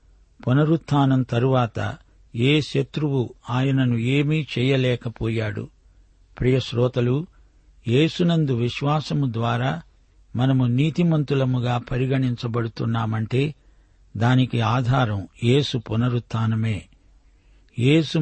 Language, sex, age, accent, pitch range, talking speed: Telugu, male, 50-69, native, 115-140 Hz, 65 wpm